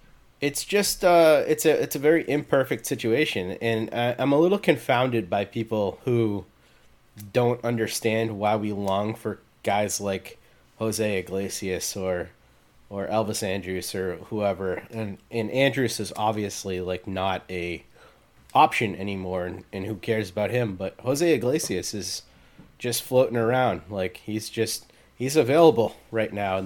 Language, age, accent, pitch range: English, 30-49, American, 100-125 Hz